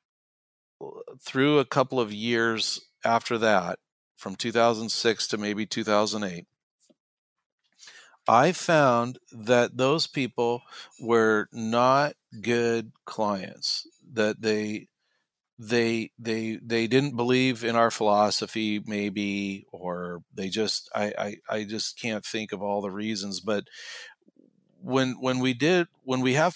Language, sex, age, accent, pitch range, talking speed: English, male, 50-69, American, 105-125 Hz, 120 wpm